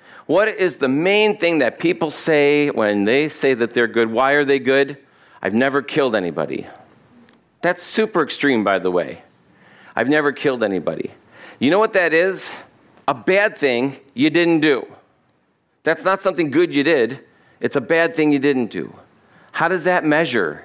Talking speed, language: 175 wpm, English